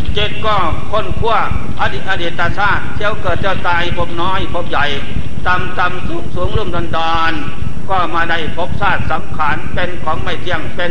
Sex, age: male, 60-79